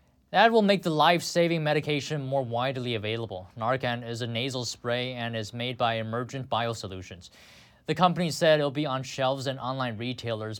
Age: 20-39